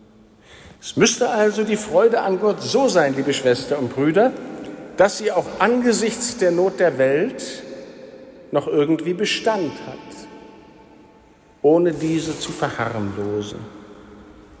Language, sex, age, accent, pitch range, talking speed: German, male, 60-79, German, 125-160 Hz, 120 wpm